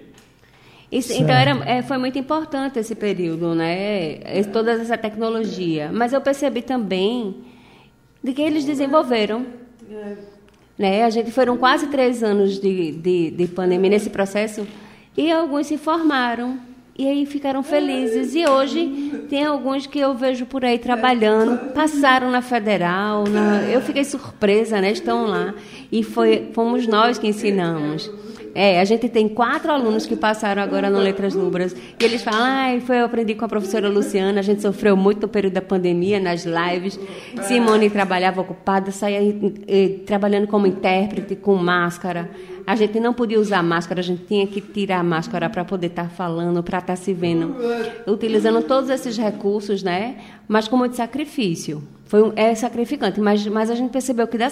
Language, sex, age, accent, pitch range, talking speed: Portuguese, female, 20-39, Brazilian, 195-245 Hz, 170 wpm